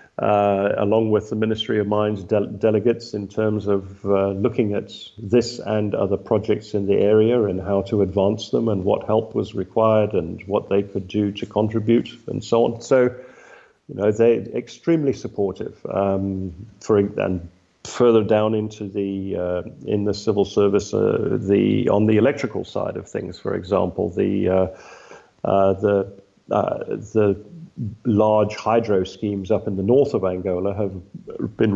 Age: 50-69